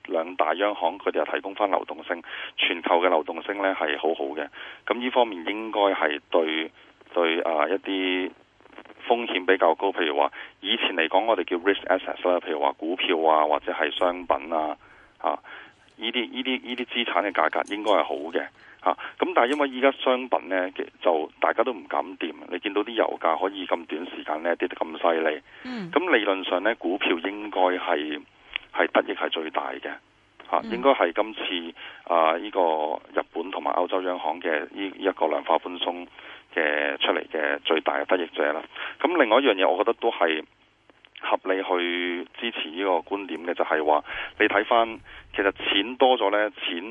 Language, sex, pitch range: Chinese, male, 80-105 Hz